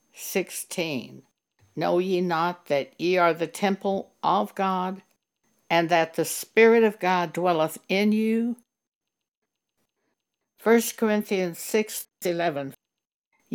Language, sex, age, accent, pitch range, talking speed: English, female, 60-79, American, 160-205 Hz, 100 wpm